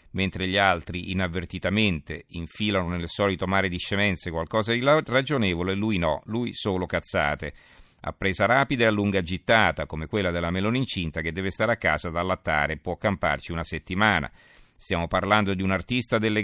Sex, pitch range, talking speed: male, 85-105 Hz, 170 wpm